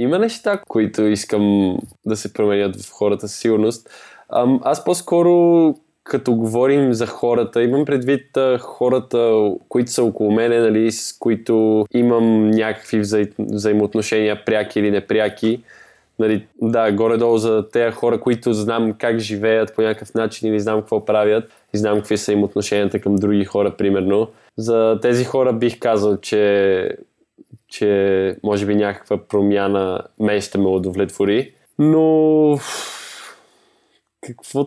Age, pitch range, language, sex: 20-39, 105-125 Hz, Bulgarian, male